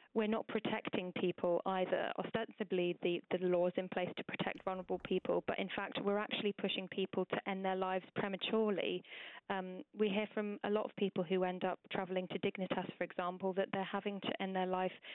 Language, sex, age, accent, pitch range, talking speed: English, female, 20-39, British, 180-200 Hz, 200 wpm